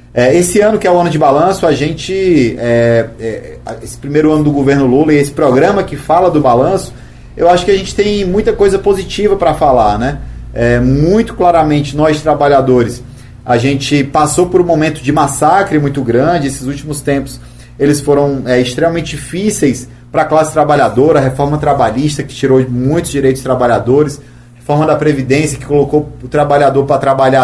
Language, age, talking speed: Portuguese, 30-49, 175 wpm